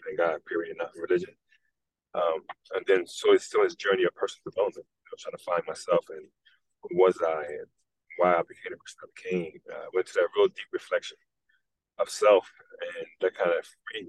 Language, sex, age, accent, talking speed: English, male, 30-49, American, 190 wpm